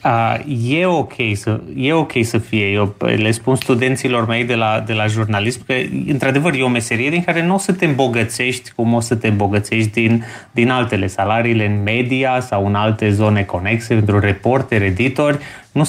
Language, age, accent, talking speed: Romanian, 30-49, native, 190 wpm